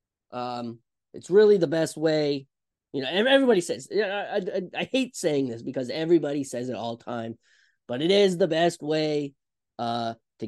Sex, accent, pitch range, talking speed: male, American, 125-170 Hz, 170 wpm